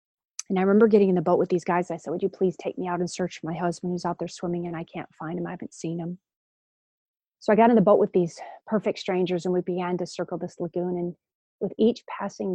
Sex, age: female, 40-59